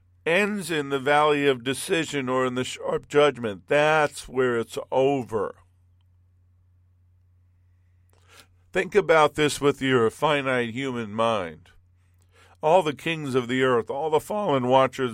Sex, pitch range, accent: male, 90-135 Hz, American